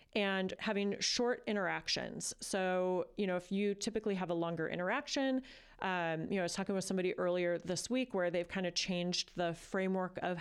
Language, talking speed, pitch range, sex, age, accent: English, 190 wpm, 170-205 Hz, female, 30-49, American